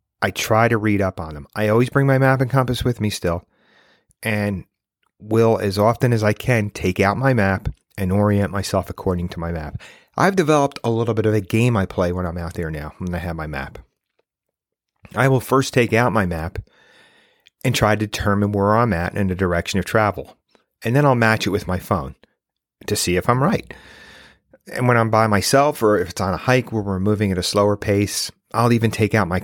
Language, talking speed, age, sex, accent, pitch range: English, 225 wpm, 40-59, male, American, 95-115 Hz